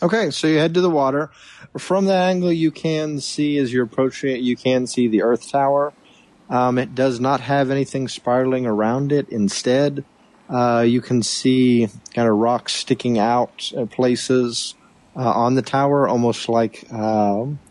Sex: male